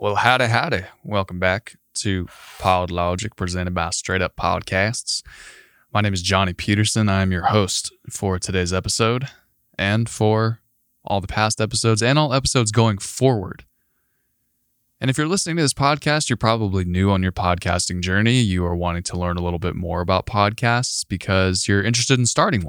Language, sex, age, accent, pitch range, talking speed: English, male, 20-39, American, 90-120 Hz, 170 wpm